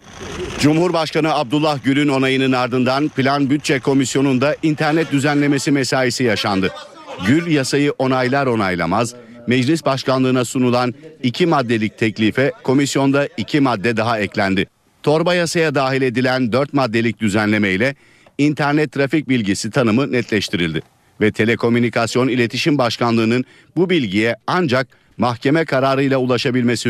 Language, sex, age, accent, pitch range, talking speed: Turkish, male, 50-69, native, 115-145 Hz, 110 wpm